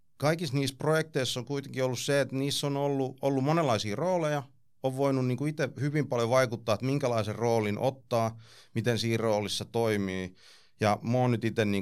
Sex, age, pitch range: male, 30-49, 100-125 Hz